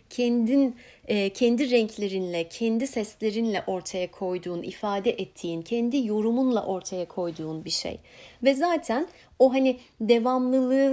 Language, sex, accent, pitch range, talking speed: Turkish, female, native, 195-300 Hz, 110 wpm